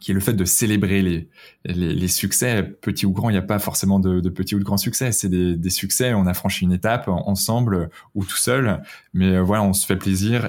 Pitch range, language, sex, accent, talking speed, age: 90-105 Hz, French, male, French, 250 wpm, 20-39